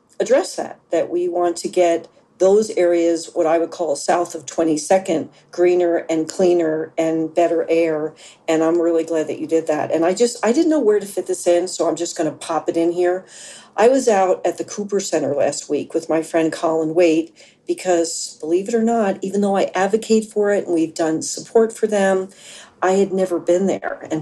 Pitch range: 160-195 Hz